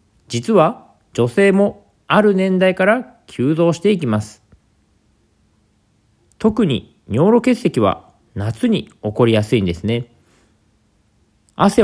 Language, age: Japanese, 40-59